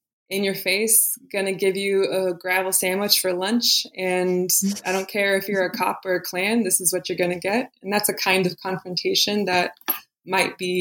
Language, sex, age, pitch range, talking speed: English, female, 20-39, 180-200 Hz, 215 wpm